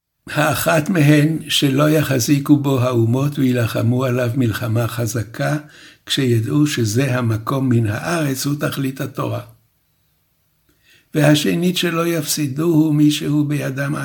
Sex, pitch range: male, 120-150 Hz